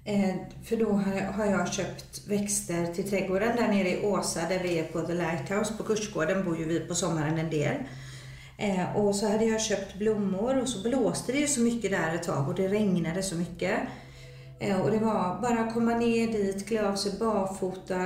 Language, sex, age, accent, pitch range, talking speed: Swedish, female, 40-59, native, 175-210 Hz, 195 wpm